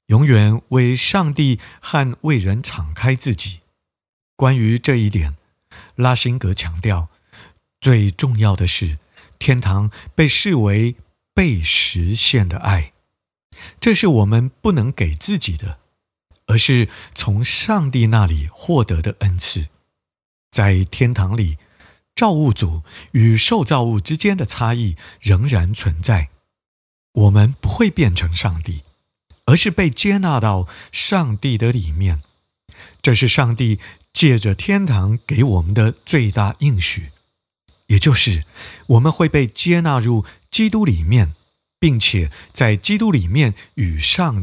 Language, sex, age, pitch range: Chinese, male, 50-69, 90-135 Hz